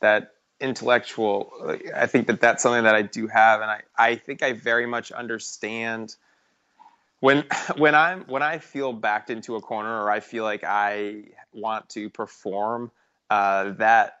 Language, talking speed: English, 165 wpm